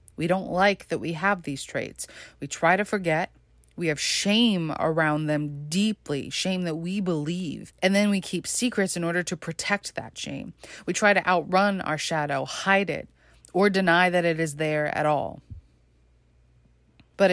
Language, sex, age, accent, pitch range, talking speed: English, female, 30-49, American, 140-180 Hz, 175 wpm